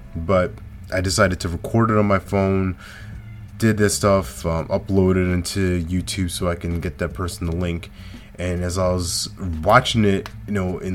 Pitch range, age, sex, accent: 90-105 Hz, 20-39, male, American